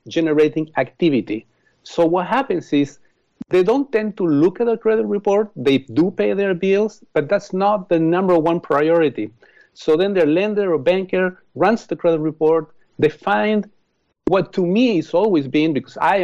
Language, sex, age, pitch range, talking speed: English, male, 50-69, 150-210 Hz, 175 wpm